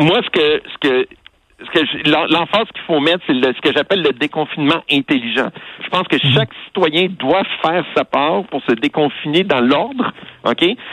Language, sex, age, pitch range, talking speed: French, male, 60-79, 150-225 Hz, 190 wpm